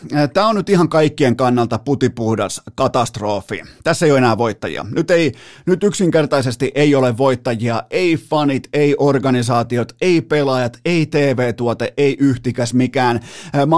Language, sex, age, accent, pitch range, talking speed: Finnish, male, 30-49, native, 115-145 Hz, 140 wpm